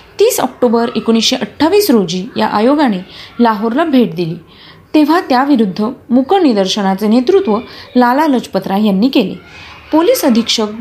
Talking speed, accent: 110 wpm, native